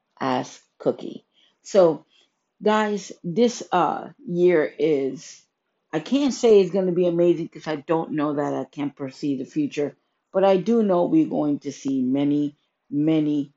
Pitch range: 135-165 Hz